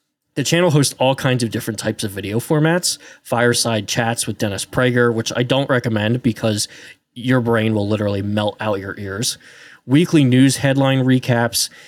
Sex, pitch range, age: male, 110-135 Hz, 20-39